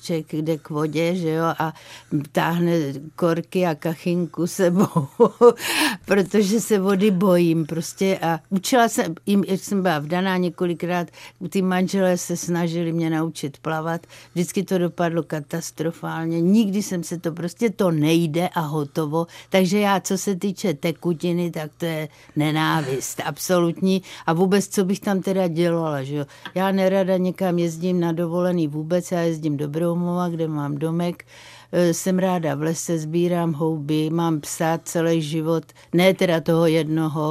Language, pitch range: Czech, 160-180 Hz